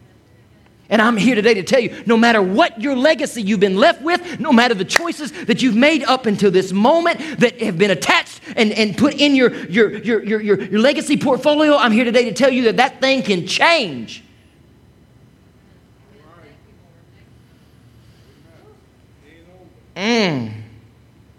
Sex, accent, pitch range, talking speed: male, American, 205-275 Hz, 150 wpm